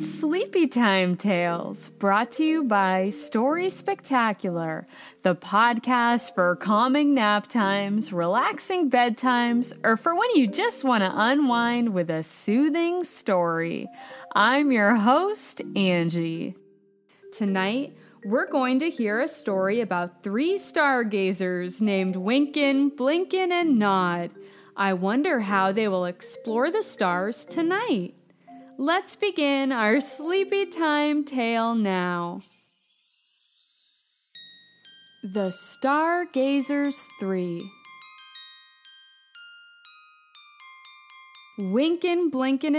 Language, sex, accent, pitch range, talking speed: English, female, American, 190-295 Hz, 95 wpm